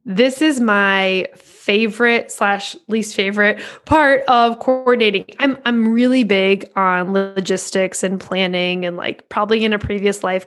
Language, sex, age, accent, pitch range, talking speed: English, female, 20-39, American, 200-255 Hz, 145 wpm